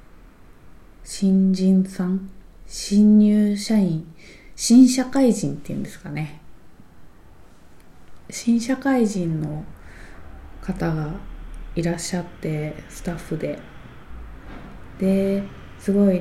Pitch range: 150-190 Hz